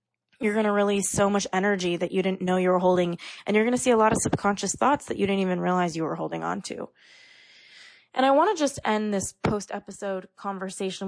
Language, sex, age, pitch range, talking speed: English, female, 20-39, 185-215 Hz, 235 wpm